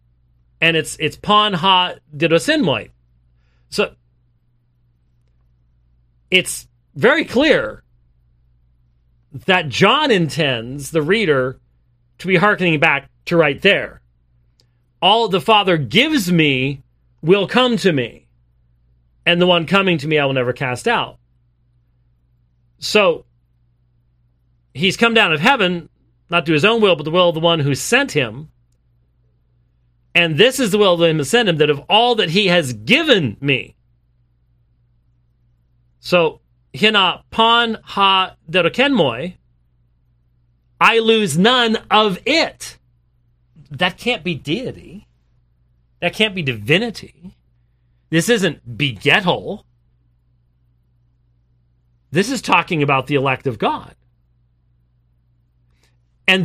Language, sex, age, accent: English, male, 40-59, American